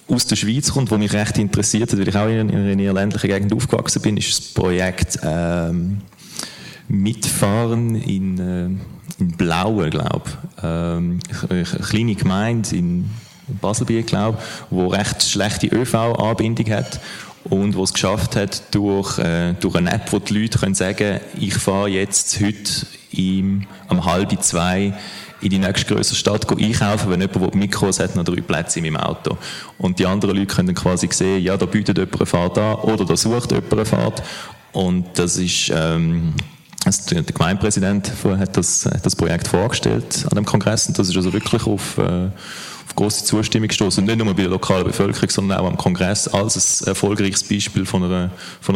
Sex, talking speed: male, 180 wpm